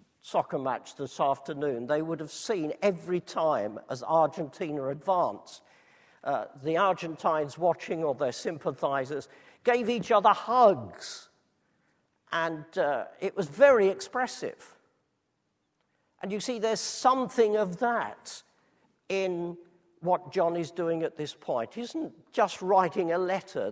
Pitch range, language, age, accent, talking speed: 165-230 Hz, English, 50-69, British, 130 wpm